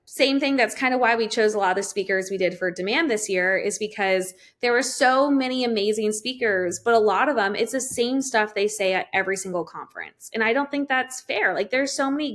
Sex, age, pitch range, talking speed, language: female, 20-39, 190-240 Hz, 255 wpm, English